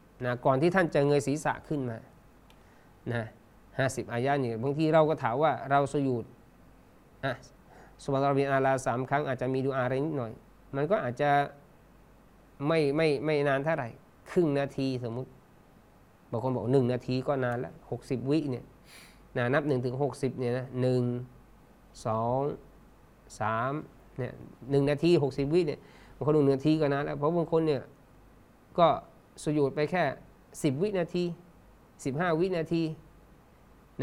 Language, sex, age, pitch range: Thai, male, 20-39, 125-150 Hz